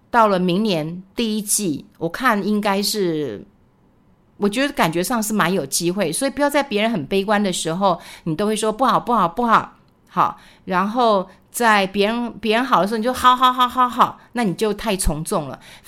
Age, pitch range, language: 50-69, 175-220 Hz, Chinese